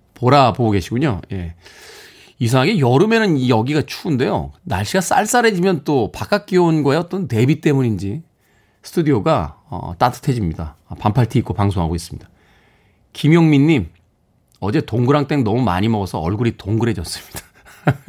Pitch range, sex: 100-145 Hz, male